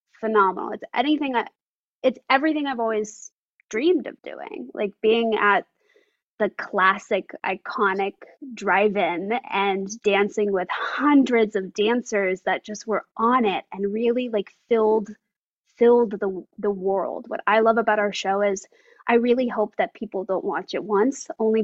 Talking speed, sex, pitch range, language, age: 150 wpm, female, 200-250 Hz, English, 20-39